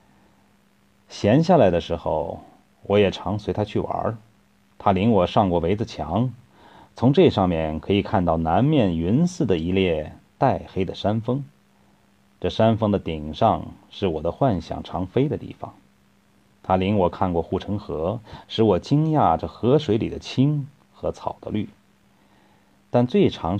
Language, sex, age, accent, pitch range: Chinese, male, 30-49, native, 90-120 Hz